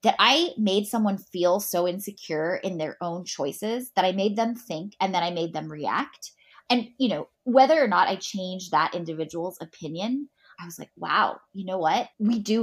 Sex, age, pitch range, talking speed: female, 20-39, 160-215 Hz, 200 wpm